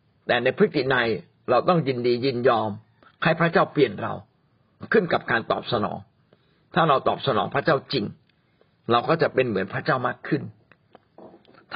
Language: Thai